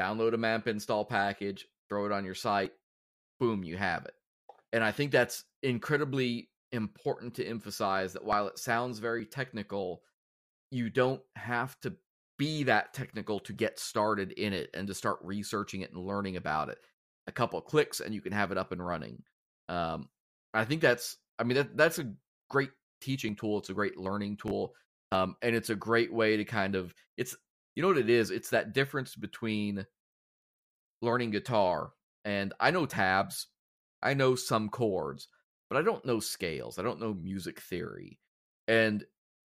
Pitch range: 100-120 Hz